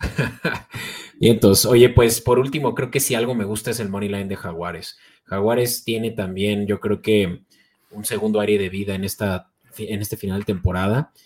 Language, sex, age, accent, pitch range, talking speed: Spanish, male, 30-49, Mexican, 100-115 Hz, 190 wpm